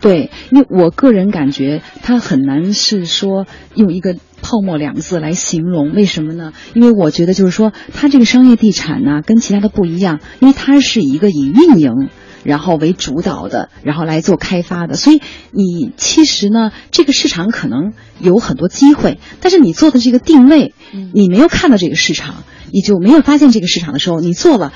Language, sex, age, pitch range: Chinese, female, 30-49, 180-275 Hz